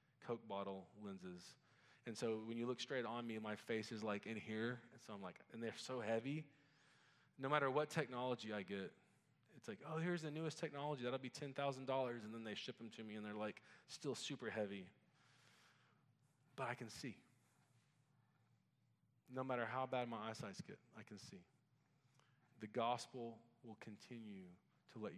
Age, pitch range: 20-39, 105-130 Hz